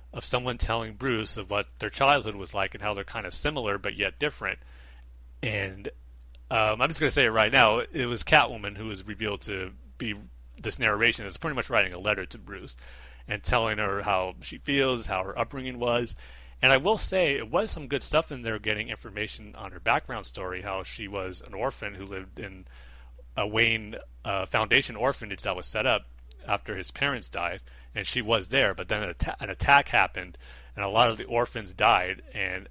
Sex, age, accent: male, 30-49, American